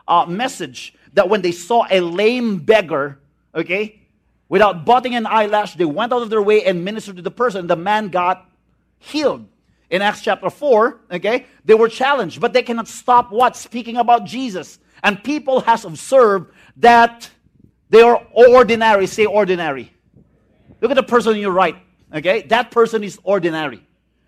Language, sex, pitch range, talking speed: English, male, 160-220 Hz, 165 wpm